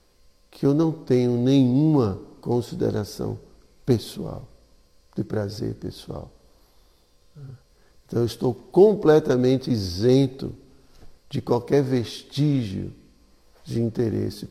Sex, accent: male, Brazilian